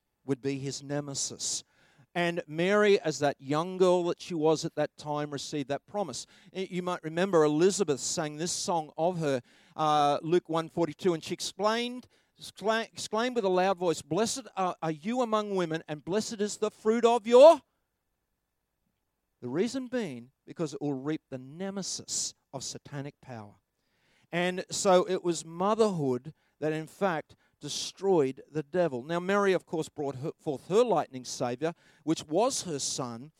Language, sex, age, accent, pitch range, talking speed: English, male, 50-69, Australian, 150-190 Hz, 160 wpm